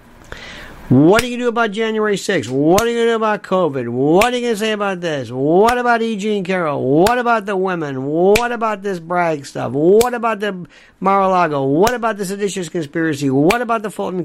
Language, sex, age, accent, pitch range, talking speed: English, male, 60-79, American, 170-235 Hz, 215 wpm